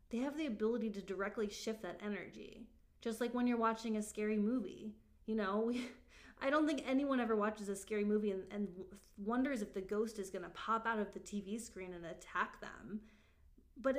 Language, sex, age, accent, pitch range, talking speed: English, female, 20-39, American, 195-250 Hz, 205 wpm